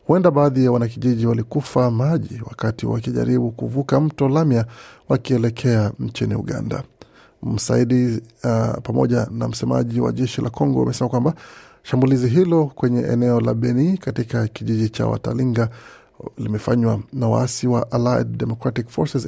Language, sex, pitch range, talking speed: Swahili, male, 115-135 Hz, 130 wpm